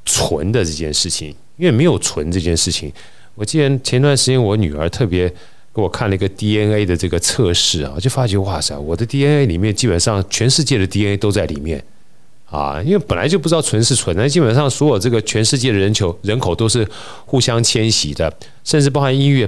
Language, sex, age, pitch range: Chinese, male, 30-49, 85-115 Hz